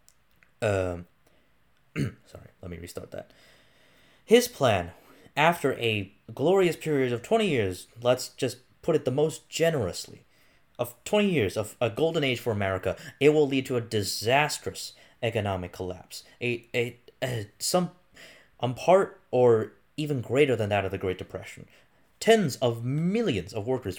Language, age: English, 20-39